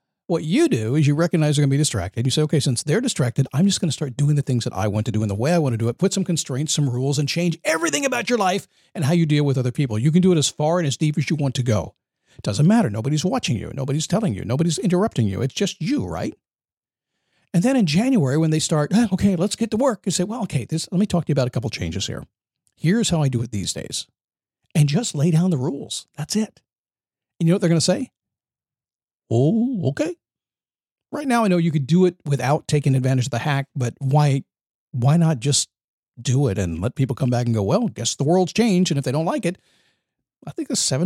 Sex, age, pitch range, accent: male, 50-69, 130-180 Hz, American